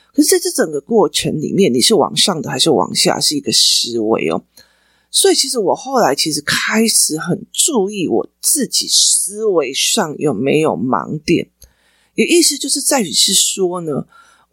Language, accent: Chinese, native